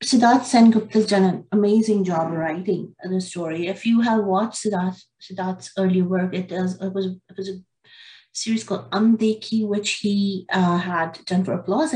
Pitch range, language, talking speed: 180-215 Hz, English, 175 wpm